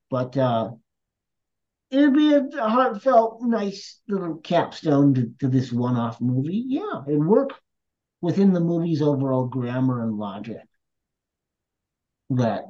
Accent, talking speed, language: American, 130 wpm, English